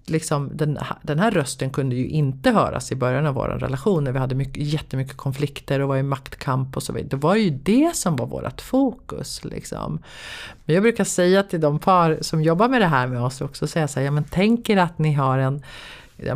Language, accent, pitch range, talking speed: Swedish, native, 140-175 Hz, 215 wpm